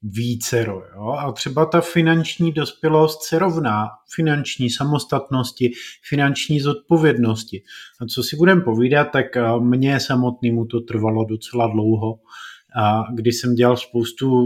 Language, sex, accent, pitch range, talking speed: Czech, male, native, 115-145 Hz, 115 wpm